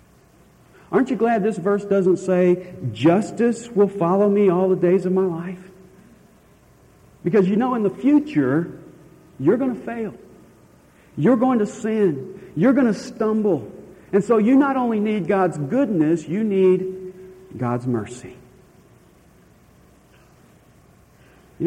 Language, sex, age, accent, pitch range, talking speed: English, male, 50-69, American, 125-185 Hz, 135 wpm